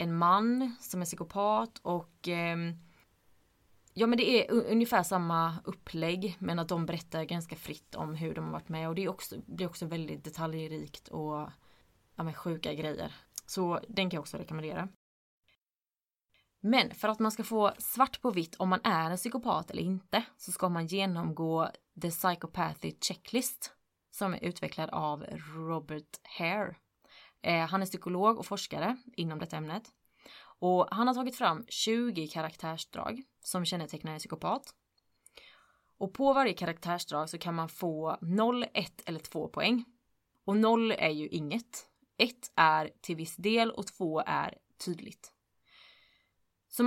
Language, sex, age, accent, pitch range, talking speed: Swedish, female, 20-39, native, 160-220 Hz, 145 wpm